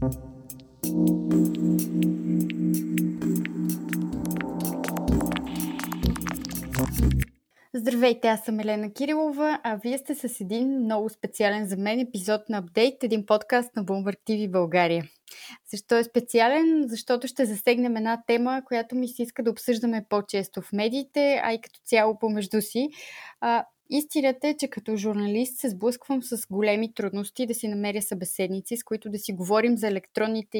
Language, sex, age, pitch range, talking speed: Bulgarian, female, 20-39, 190-240 Hz, 130 wpm